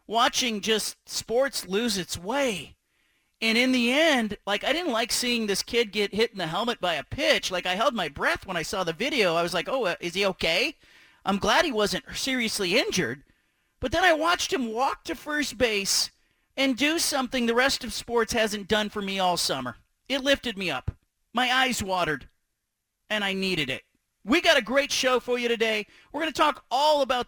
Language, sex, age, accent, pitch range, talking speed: English, male, 40-59, American, 205-270 Hz, 210 wpm